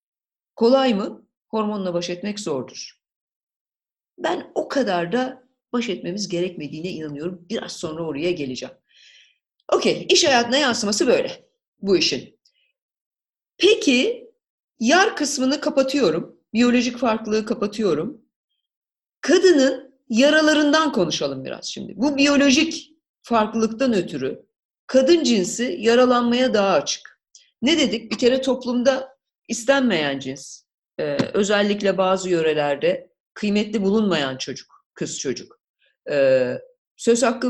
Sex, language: female, Turkish